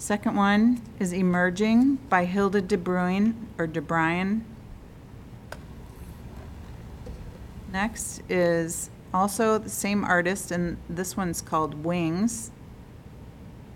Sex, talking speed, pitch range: female, 95 wpm, 165-205 Hz